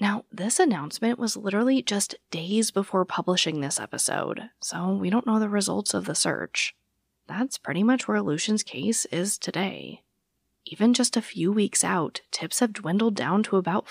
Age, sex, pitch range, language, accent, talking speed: 20-39, female, 150-215 Hz, English, American, 175 wpm